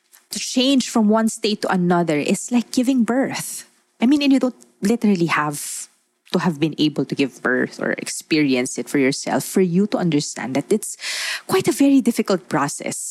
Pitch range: 150-225 Hz